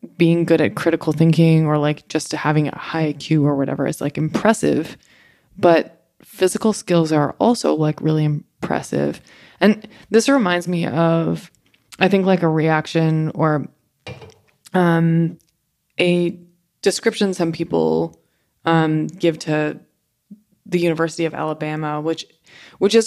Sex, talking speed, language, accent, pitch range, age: female, 135 wpm, English, American, 150-175 Hz, 20-39